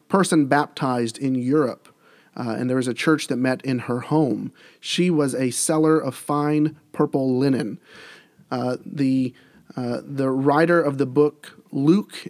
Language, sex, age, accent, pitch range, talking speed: English, male, 40-59, American, 135-170 Hz, 155 wpm